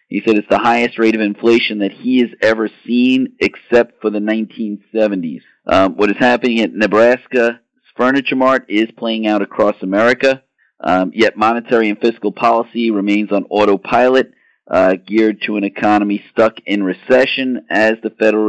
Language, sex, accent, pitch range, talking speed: English, male, American, 100-115 Hz, 160 wpm